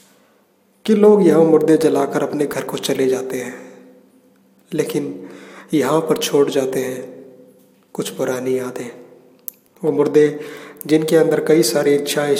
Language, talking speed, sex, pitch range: Hindi, 130 wpm, male, 135-155 Hz